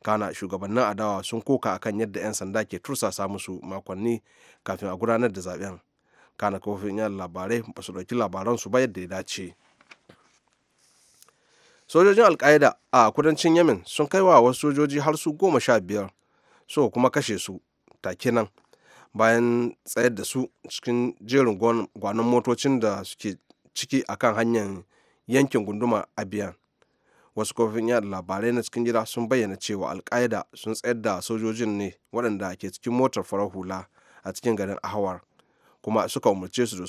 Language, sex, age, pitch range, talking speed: English, male, 30-49, 95-120 Hz, 145 wpm